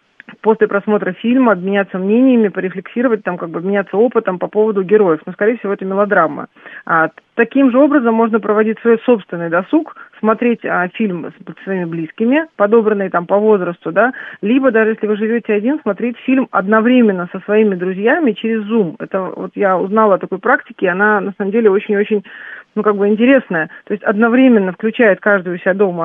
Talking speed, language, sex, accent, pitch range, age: 175 wpm, Russian, female, native, 190-235 Hz, 40-59